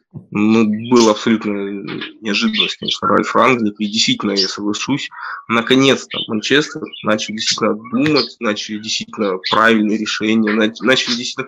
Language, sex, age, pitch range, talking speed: Russian, male, 20-39, 110-130 Hz, 115 wpm